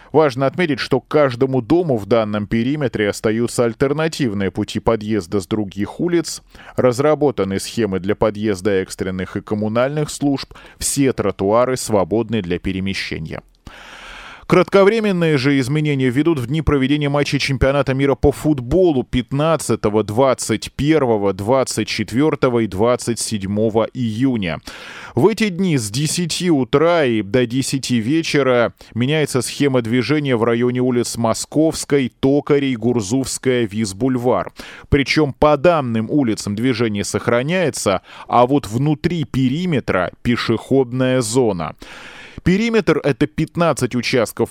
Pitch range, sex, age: 115-150 Hz, male, 20-39